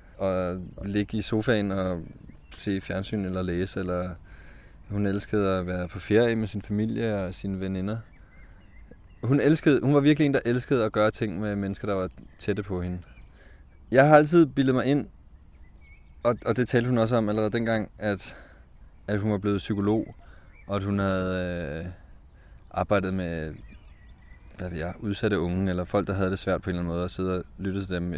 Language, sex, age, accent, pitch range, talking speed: Danish, male, 20-39, native, 90-110 Hz, 185 wpm